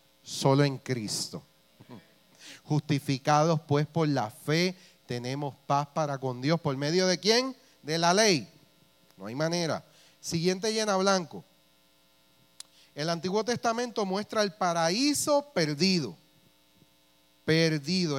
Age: 40-59